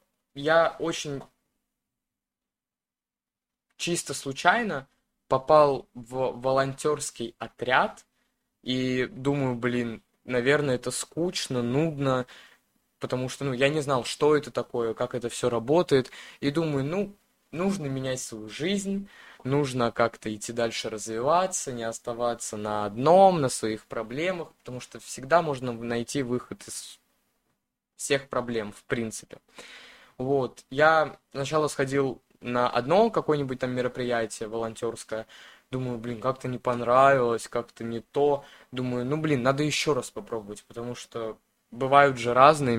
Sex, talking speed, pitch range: male, 125 wpm, 120-145 Hz